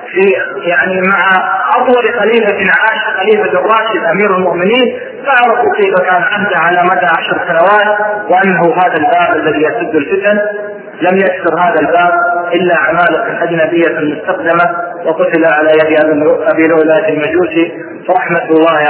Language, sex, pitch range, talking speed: Arabic, male, 170-210 Hz, 130 wpm